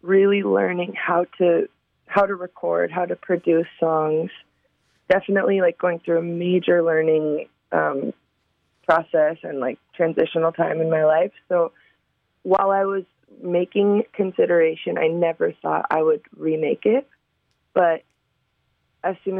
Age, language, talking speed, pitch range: 20-39, English, 135 wpm, 160-190 Hz